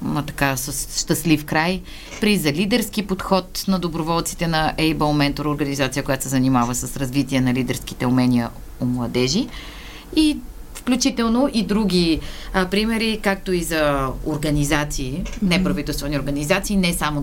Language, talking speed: Bulgarian, 135 wpm